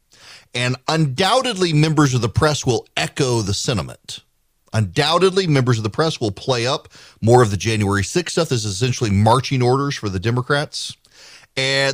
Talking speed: 160 wpm